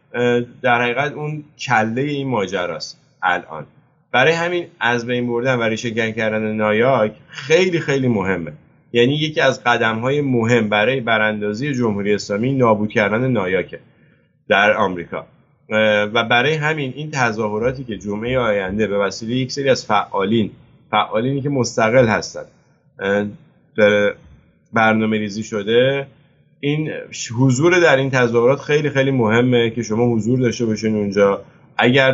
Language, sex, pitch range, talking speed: English, male, 105-135 Hz, 130 wpm